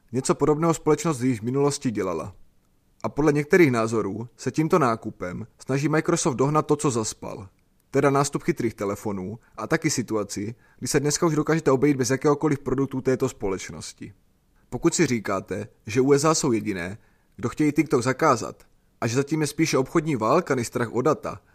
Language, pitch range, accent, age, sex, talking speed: Czech, 115-155 Hz, native, 30-49, male, 165 wpm